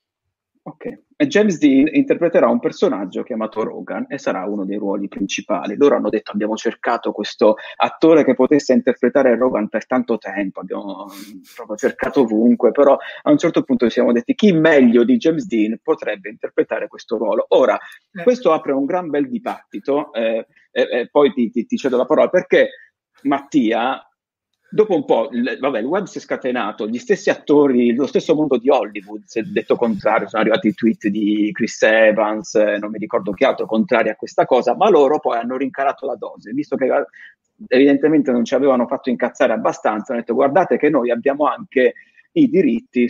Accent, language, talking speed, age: native, Italian, 180 wpm, 30-49